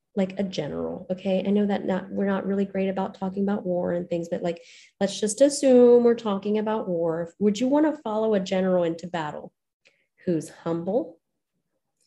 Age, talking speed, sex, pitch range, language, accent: 30-49, 190 wpm, female, 170-215 Hz, English, American